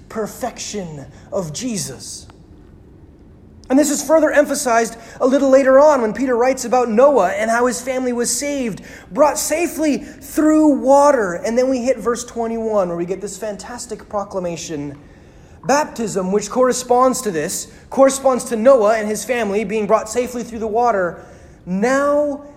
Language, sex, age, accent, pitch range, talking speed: English, male, 30-49, American, 195-275 Hz, 150 wpm